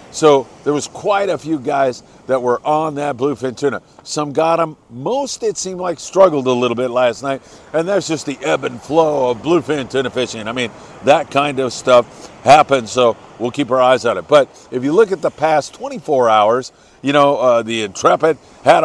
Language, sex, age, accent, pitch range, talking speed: English, male, 50-69, American, 130-165 Hz, 210 wpm